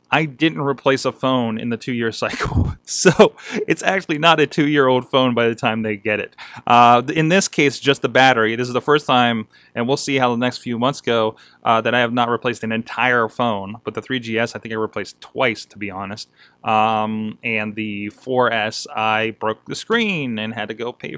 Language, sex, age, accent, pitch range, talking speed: English, male, 30-49, American, 110-145 Hz, 215 wpm